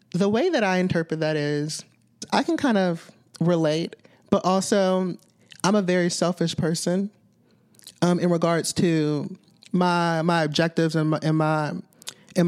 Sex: male